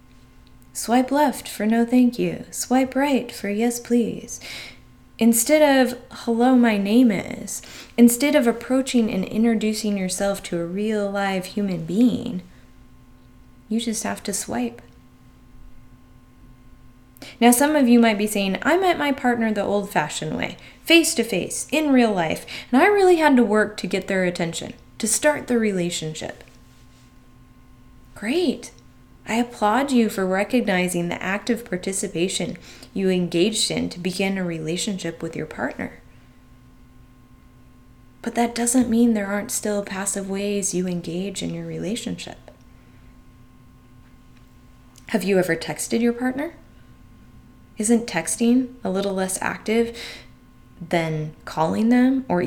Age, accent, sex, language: 20-39, American, female, English